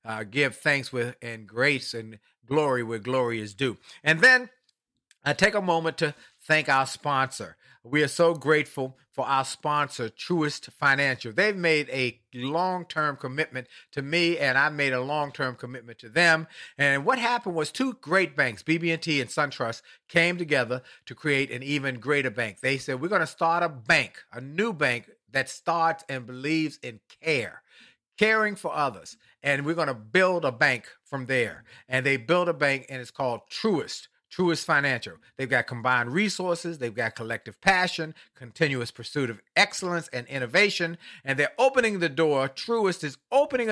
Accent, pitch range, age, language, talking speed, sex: American, 130-170 Hz, 50-69, English, 175 wpm, male